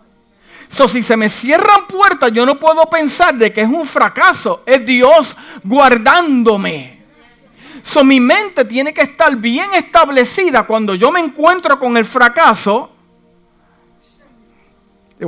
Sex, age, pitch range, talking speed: male, 50-69, 215-295 Hz, 135 wpm